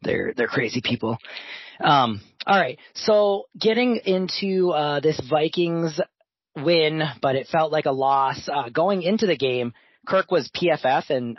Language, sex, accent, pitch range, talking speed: English, male, American, 125-160 Hz, 155 wpm